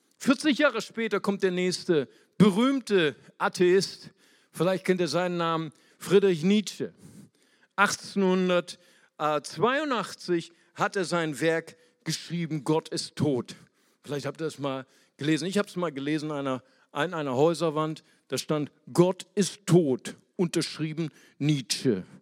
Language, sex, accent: German, male, German